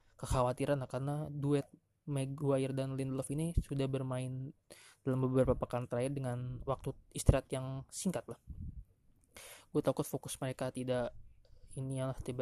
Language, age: Indonesian, 20-39